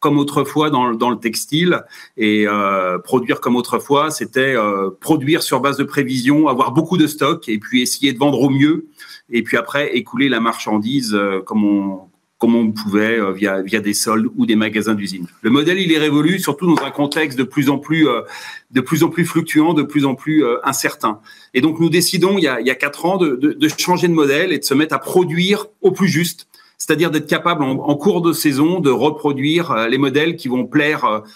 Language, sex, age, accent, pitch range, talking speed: French, male, 40-59, French, 125-165 Hz, 225 wpm